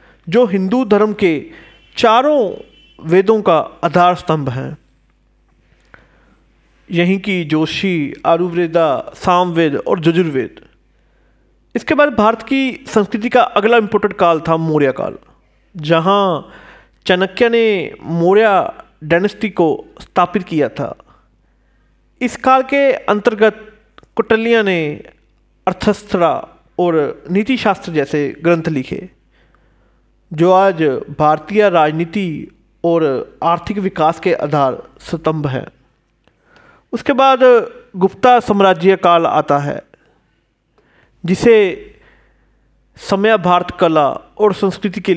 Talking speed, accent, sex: 100 wpm, native, male